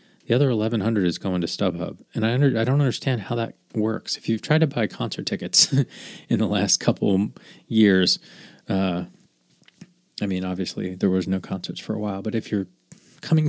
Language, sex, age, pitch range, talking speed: English, male, 20-39, 95-125 Hz, 195 wpm